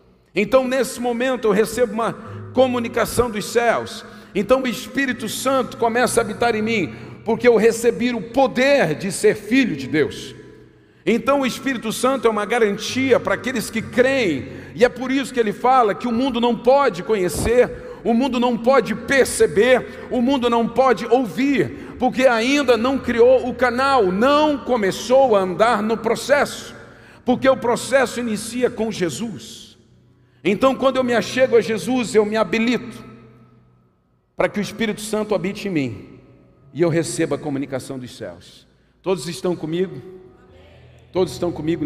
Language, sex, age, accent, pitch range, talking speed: Portuguese, male, 50-69, Brazilian, 175-245 Hz, 160 wpm